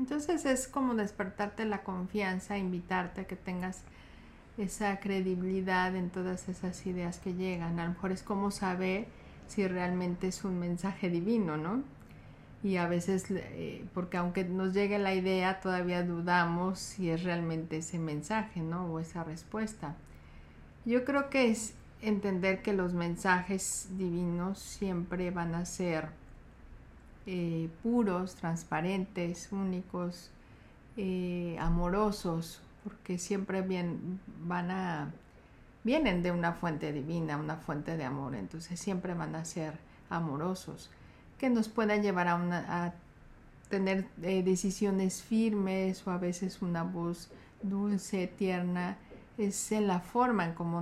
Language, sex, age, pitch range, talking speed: Spanish, female, 50-69, 170-200 Hz, 135 wpm